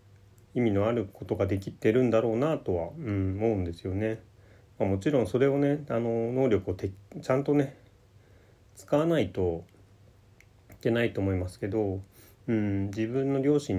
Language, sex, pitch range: Japanese, male, 95-115 Hz